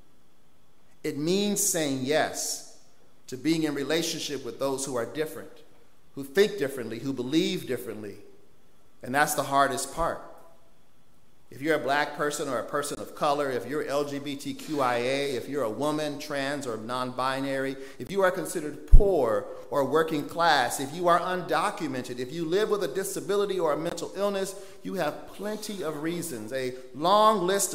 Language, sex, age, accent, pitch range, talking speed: English, male, 50-69, American, 135-180 Hz, 160 wpm